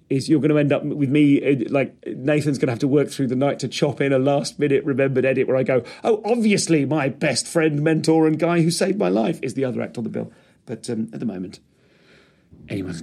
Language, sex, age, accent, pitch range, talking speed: English, male, 40-59, British, 110-145 Hz, 245 wpm